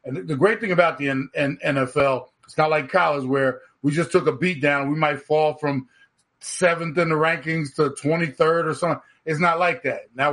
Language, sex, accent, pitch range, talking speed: English, male, American, 150-200 Hz, 215 wpm